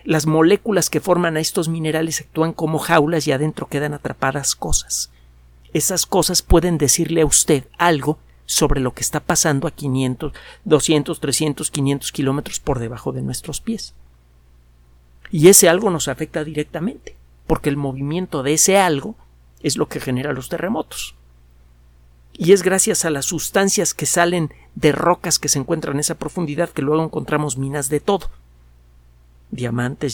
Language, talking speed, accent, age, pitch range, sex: Spanish, 155 wpm, Mexican, 50-69, 135-170 Hz, male